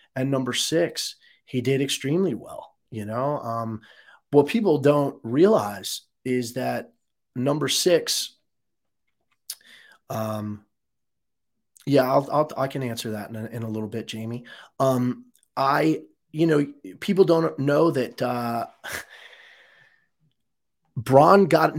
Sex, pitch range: male, 120-150 Hz